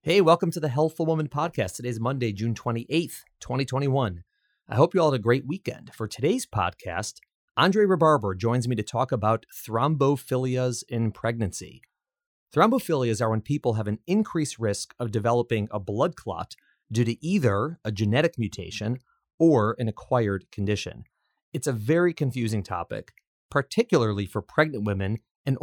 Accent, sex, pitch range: American, male, 105-140 Hz